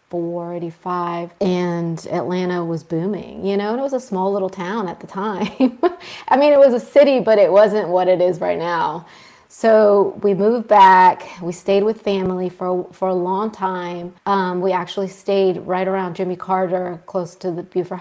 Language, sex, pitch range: English, female, 180-210 Hz